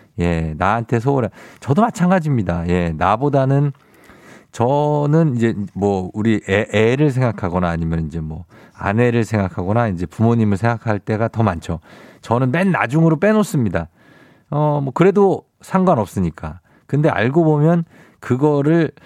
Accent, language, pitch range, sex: native, Korean, 100-150 Hz, male